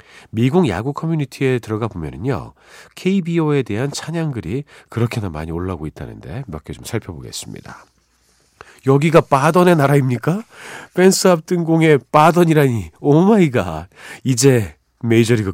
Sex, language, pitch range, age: male, Korean, 105-145 Hz, 40-59